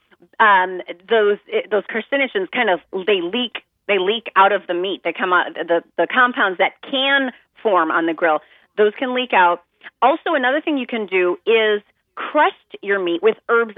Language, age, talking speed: English, 30-49, 185 wpm